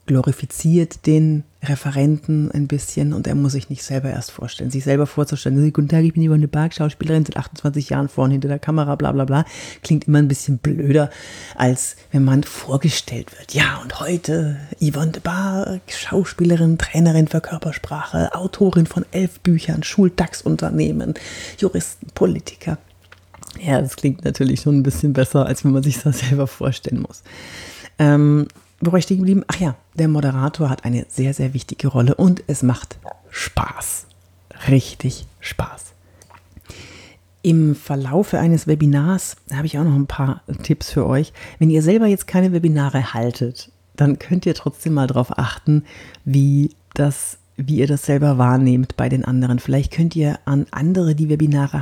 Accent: German